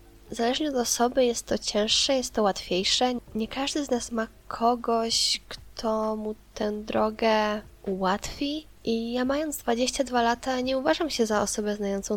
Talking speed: 155 wpm